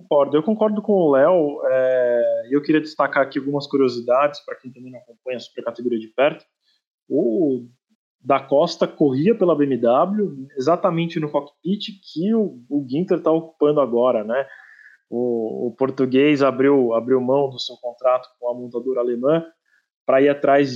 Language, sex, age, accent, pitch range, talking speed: Portuguese, male, 20-39, Brazilian, 130-190 Hz, 160 wpm